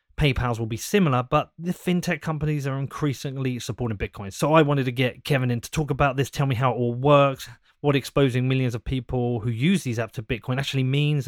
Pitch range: 115-140 Hz